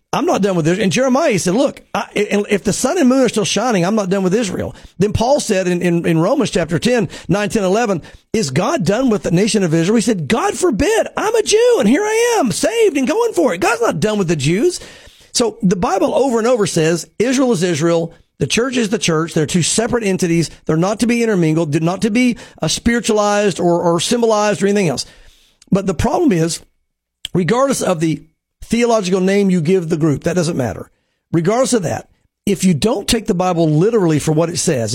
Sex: male